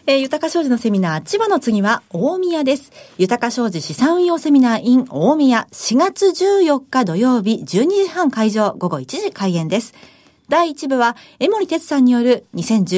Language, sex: Japanese, female